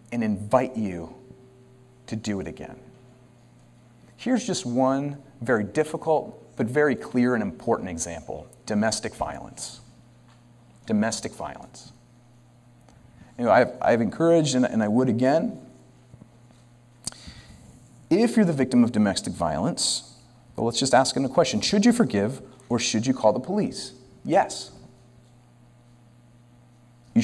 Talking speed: 125 wpm